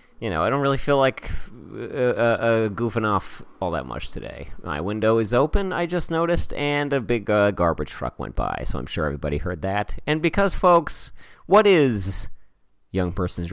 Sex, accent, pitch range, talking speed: male, American, 95-130 Hz, 190 wpm